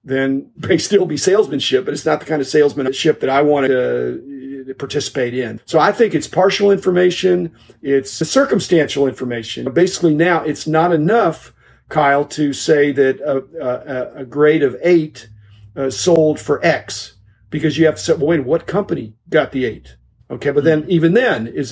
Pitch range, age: 130-165 Hz, 50-69